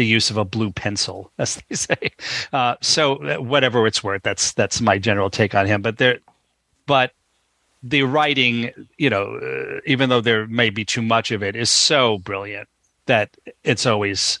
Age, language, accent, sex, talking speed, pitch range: 40-59, English, American, male, 190 wpm, 105-120 Hz